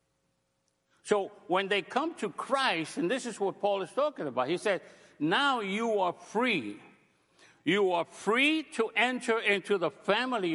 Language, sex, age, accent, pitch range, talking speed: English, male, 60-79, American, 175-230 Hz, 160 wpm